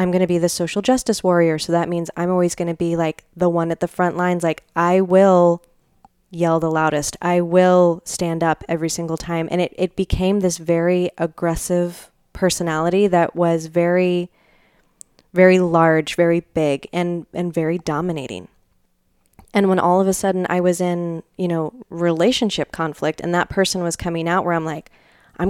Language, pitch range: English, 165-185 Hz